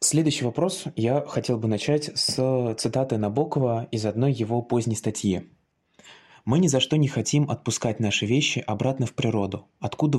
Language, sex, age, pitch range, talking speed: Russian, male, 20-39, 105-135 Hz, 160 wpm